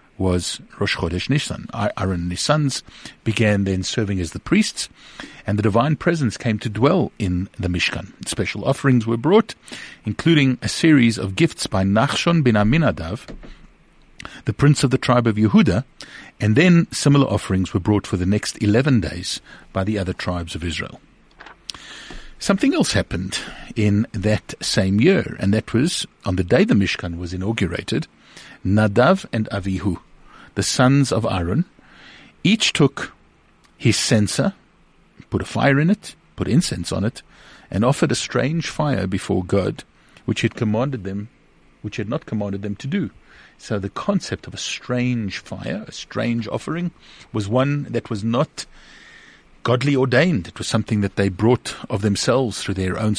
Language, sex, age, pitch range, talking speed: English, male, 50-69, 95-130 Hz, 160 wpm